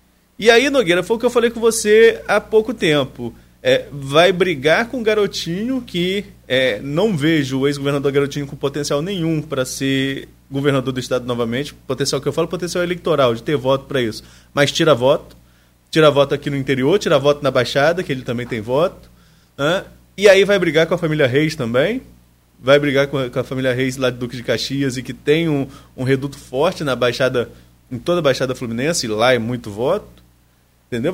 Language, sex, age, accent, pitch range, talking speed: Portuguese, male, 20-39, Brazilian, 130-180 Hz, 200 wpm